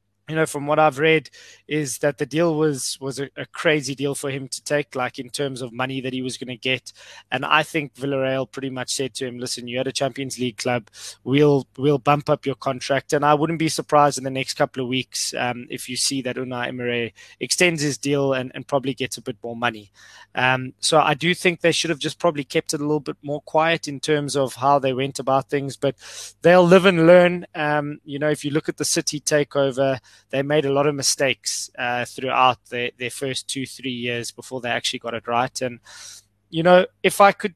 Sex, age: male, 20-39